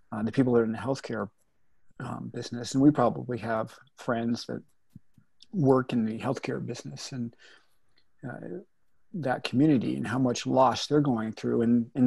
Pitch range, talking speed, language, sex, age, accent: 115-130 Hz, 170 wpm, English, male, 40-59, American